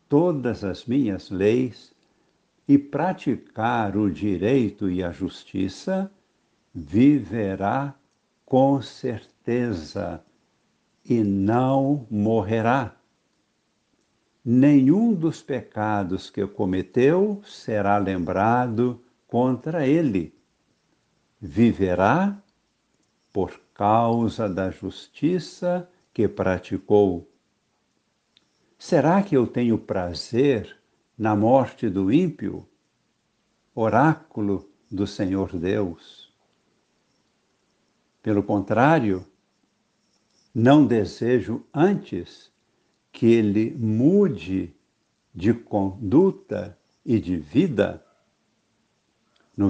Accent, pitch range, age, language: Brazilian, 100-140 Hz, 60-79, Portuguese